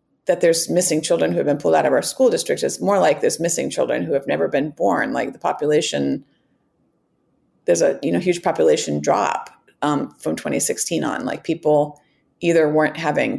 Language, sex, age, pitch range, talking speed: English, female, 30-49, 155-200 Hz, 195 wpm